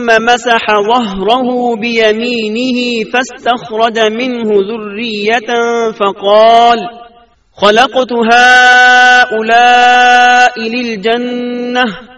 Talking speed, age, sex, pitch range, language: 55 wpm, 40-59, male, 230-250 Hz, Urdu